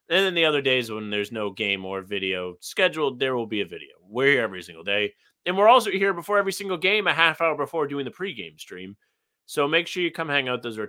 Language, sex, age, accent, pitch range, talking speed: English, male, 30-49, American, 115-160 Hz, 260 wpm